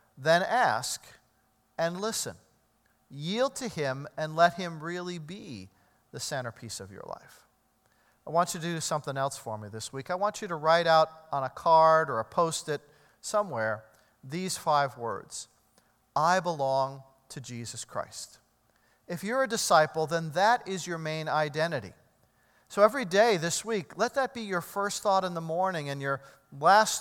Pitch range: 135-190 Hz